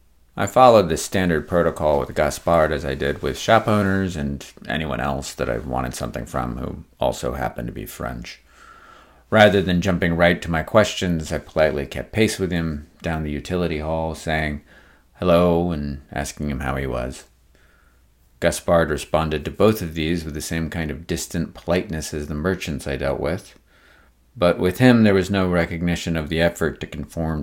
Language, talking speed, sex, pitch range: English, 180 wpm, male, 70-90 Hz